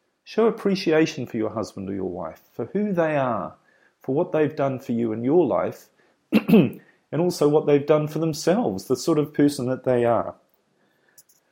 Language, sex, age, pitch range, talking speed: English, male, 40-59, 115-155 Hz, 180 wpm